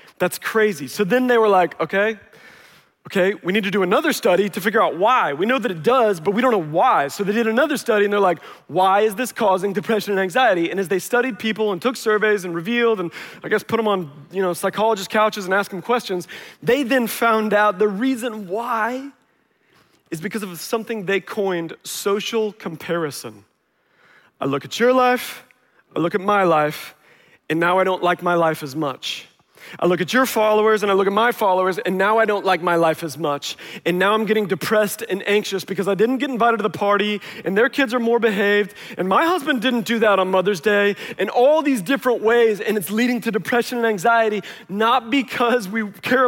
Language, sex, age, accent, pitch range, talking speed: English, male, 30-49, American, 180-230 Hz, 220 wpm